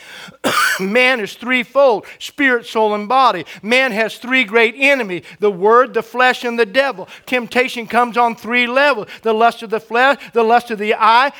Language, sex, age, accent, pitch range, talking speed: English, male, 50-69, American, 205-250 Hz, 180 wpm